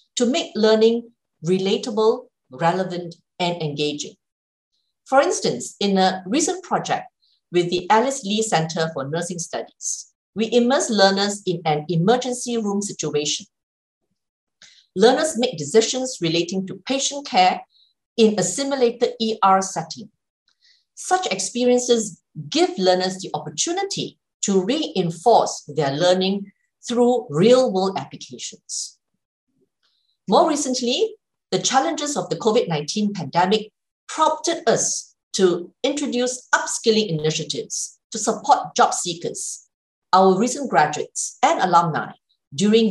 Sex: female